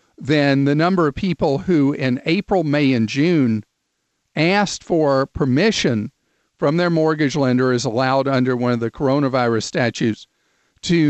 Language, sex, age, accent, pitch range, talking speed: English, male, 50-69, American, 130-165 Hz, 145 wpm